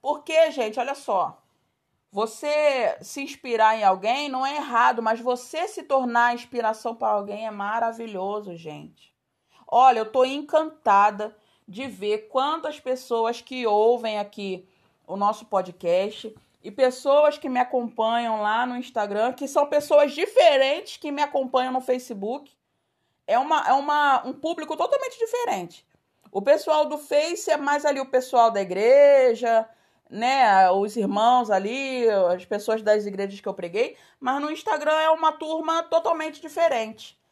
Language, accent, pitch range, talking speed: Portuguese, Brazilian, 215-295 Hz, 145 wpm